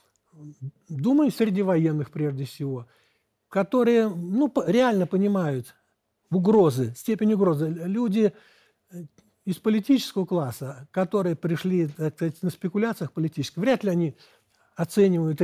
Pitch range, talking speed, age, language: 165-220 Hz, 100 wpm, 60-79, Russian